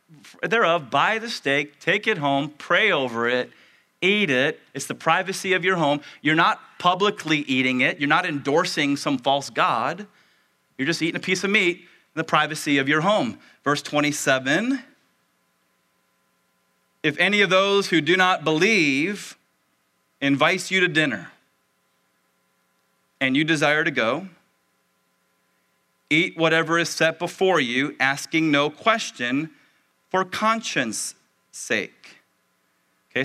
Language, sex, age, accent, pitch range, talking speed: English, male, 30-49, American, 115-180 Hz, 135 wpm